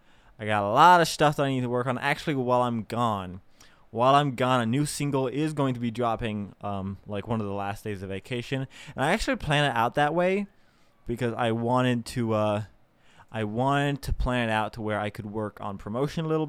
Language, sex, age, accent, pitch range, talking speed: English, male, 20-39, American, 105-150 Hz, 235 wpm